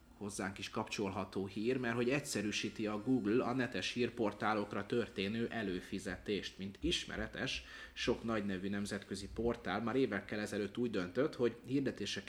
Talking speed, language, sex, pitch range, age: 135 wpm, Hungarian, male, 95-115 Hz, 30-49